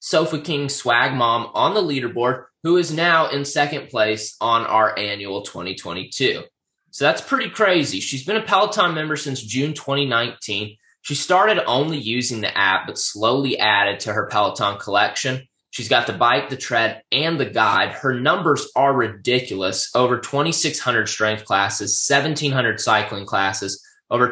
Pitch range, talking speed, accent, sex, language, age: 100-135 Hz, 155 wpm, American, male, English, 20-39